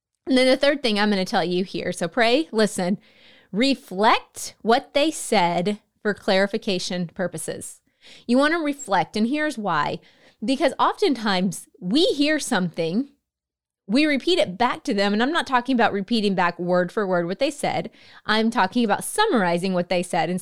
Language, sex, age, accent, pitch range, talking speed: English, female, 20-39, American, 195-275 Hz, 175 wpm